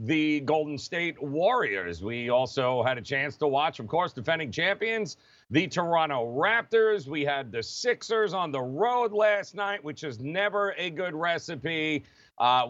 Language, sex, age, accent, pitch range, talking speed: English, male, 40-59, American, 145-195 Hz, 160 wpm